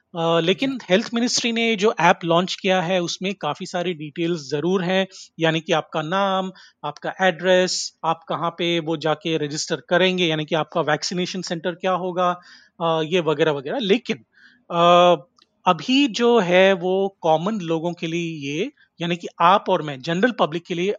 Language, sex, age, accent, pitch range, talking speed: Hindi, male, 30-49, native, 160-185 Hz, 170 wpm